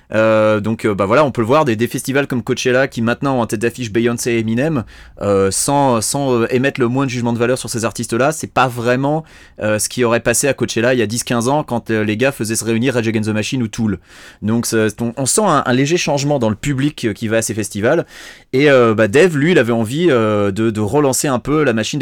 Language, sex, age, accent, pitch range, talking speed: French, male, 30-49, French, 105-130 Hz, 265 wpm